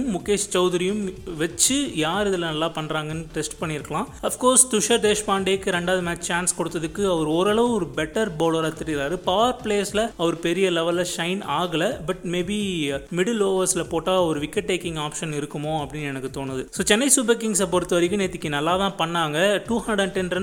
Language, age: Tamil, 30-49